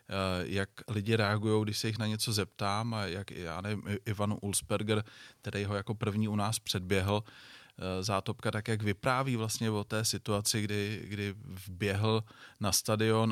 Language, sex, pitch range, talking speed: Czech, male, 100-115 Hz, 160 wpm